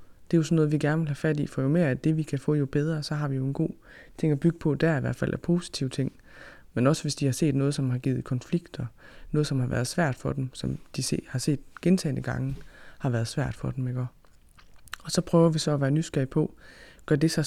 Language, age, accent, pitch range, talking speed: Danish, 20-39, native, 130-160 Hz, 270 wpm